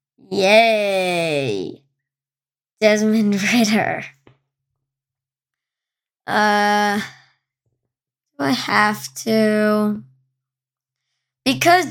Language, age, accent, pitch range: English, 10-29, American, 190-230 Hz